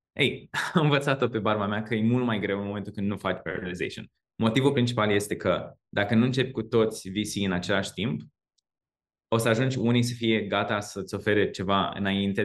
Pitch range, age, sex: 100-120 Hz, 20-39, male